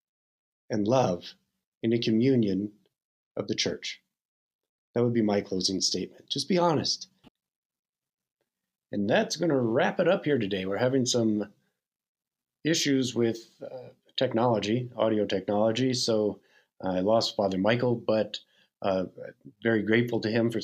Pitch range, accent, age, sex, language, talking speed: 100-125 Hz, American, 50-69, male, English, 140 wpm